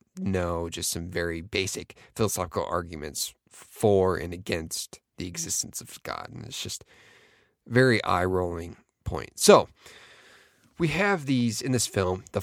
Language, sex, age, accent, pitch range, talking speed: English, male, 30-49, American, 95-120 Hz, 140 wpm